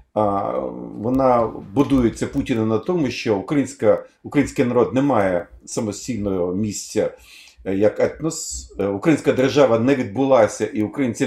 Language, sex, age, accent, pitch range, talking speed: Ukrainian, male, 50-69, native, 105-140 Hz, 110 wpm